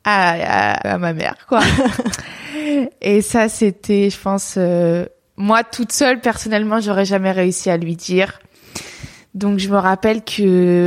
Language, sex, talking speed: French, female, 150 wpm